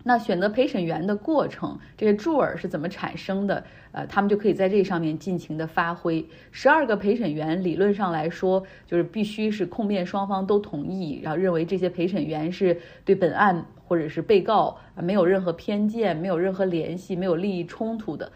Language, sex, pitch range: Chinese, female, 170-205 Hz